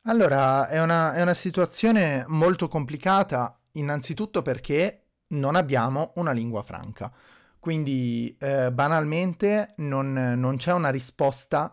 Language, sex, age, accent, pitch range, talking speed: Italian, male, 30-49, native, 115-150 Hz, 120 wpm